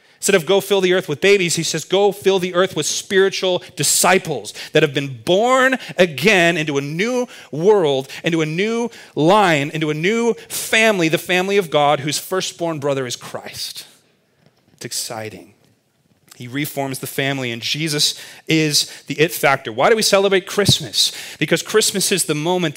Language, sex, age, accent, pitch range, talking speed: English, male, 30-49, American, 130-180 Hz, 170 wpm